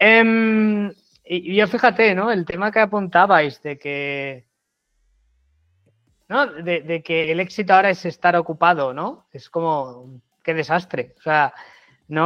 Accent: Spanish